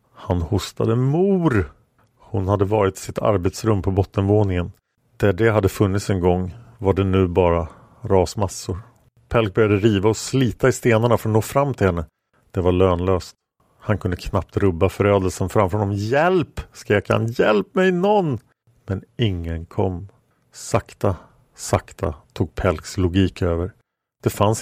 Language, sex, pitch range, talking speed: English, male, 95-115 Hz, 150 wpm